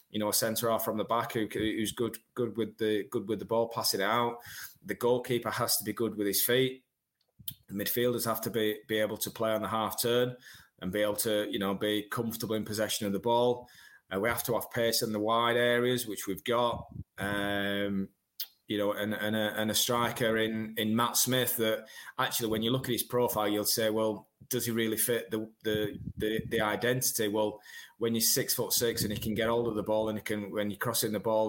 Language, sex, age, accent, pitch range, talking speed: English, male, 20-39, British, 105-120 Hz, 235 wpm